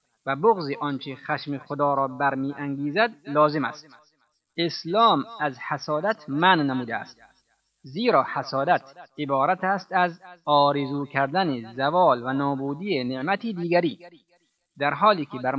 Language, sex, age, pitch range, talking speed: Persian, male, 30-49, 130-165 Hz, 120 wpm